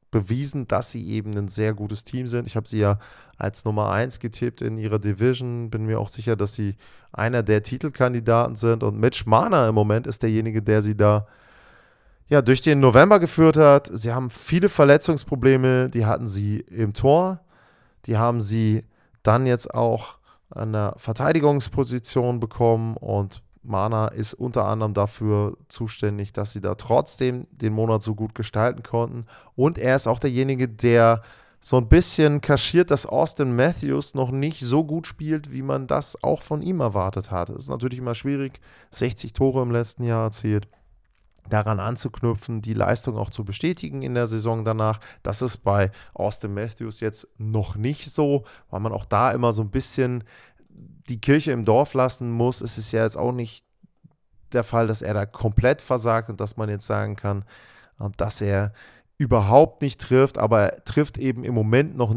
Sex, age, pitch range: male, 20-39, 110-130 Hz